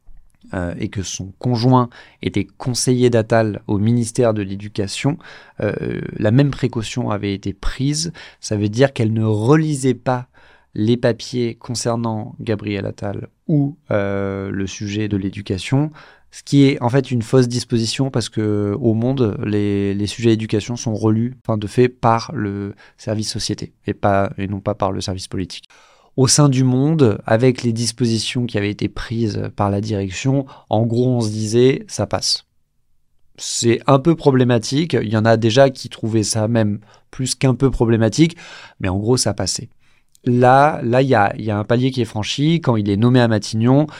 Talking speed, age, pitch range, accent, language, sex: 180 wpm, 20-39, 105-130 Hz, French, French, male